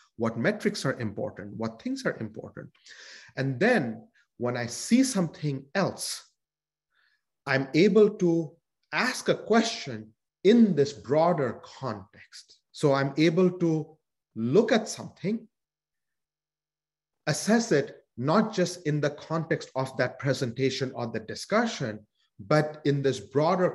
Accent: Indian